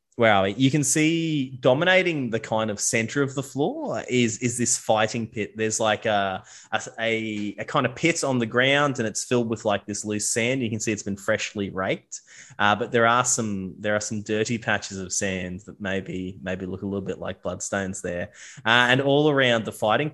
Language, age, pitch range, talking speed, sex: English, 20-39, 105-130 Hz, 215 wpm, male